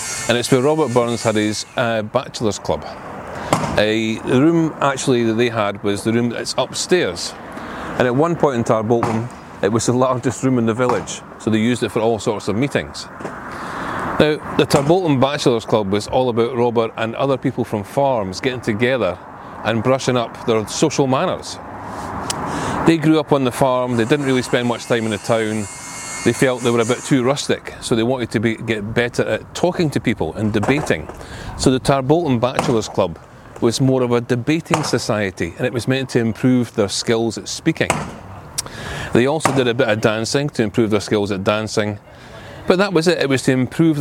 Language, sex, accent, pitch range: English, male, British, 110-130 Hz